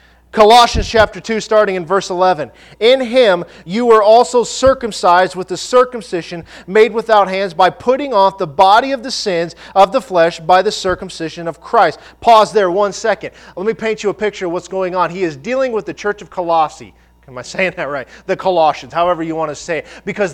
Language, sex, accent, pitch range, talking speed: English, male, American, 180-225 Hz, 210 wpm